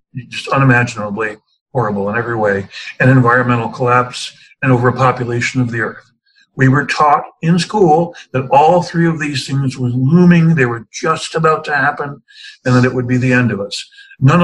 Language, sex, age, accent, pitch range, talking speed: English, male, 60-79, American, 130-170 Hz, 180 wpm